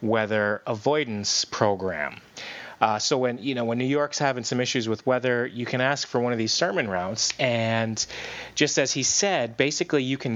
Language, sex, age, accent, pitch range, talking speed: English, male, 30-49, American, 110-130 Hz, 190 wpm